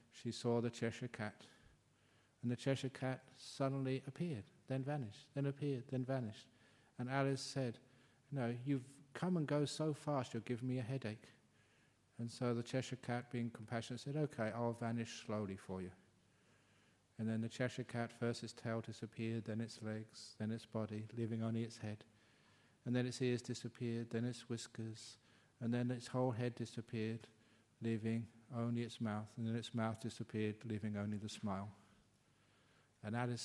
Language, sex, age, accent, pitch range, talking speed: English, male, 50-69, British, 110-130 Hz, 170 wpm